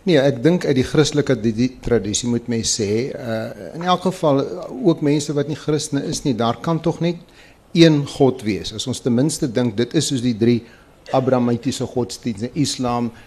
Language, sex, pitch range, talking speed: Dutch, male, 115-145 Hz, 180 wpm